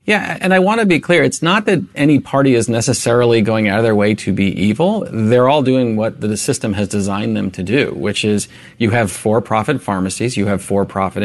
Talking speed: 220 wpm